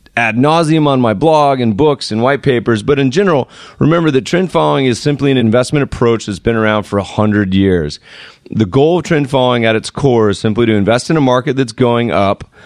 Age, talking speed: 30-49, 225 wpm